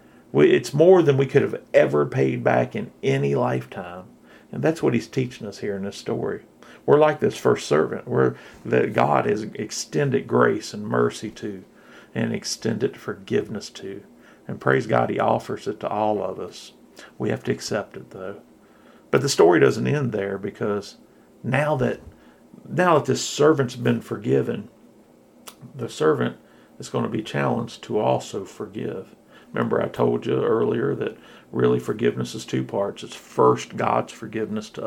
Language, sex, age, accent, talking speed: English, male, 50-69, American, 165 wpm